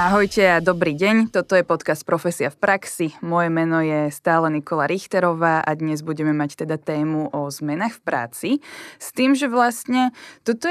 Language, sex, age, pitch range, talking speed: Slovak, female, 20-39, 165-205 Hz, 175 wpm